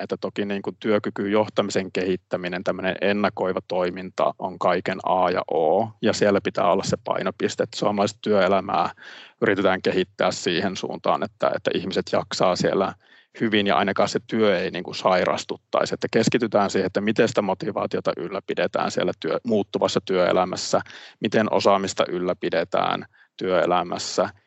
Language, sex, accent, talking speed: Finnish, male, native, 135 wpm